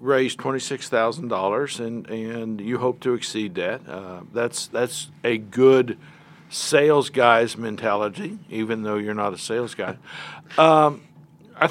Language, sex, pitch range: English, male, 105-150 Hz